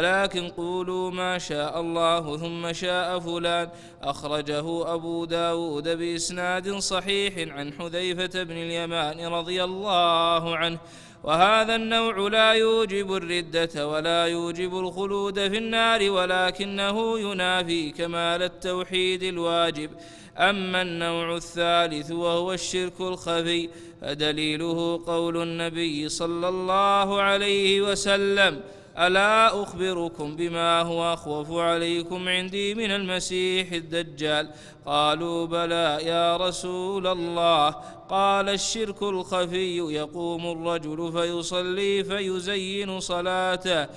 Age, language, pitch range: 20-39, Arabic, 170-185 Hz